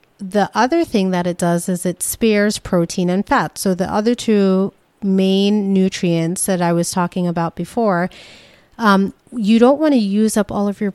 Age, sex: 30-49, female